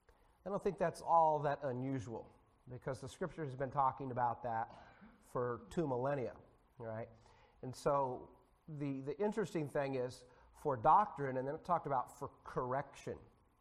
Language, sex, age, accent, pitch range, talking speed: English, male, 40-59, American, 120-165 Hz, 155 wpm